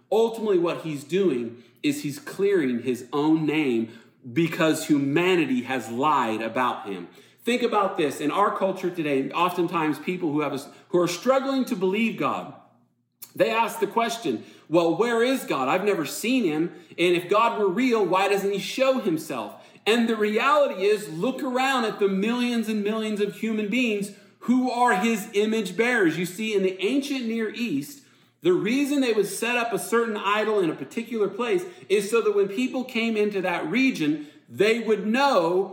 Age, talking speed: 40-59, 175 wpm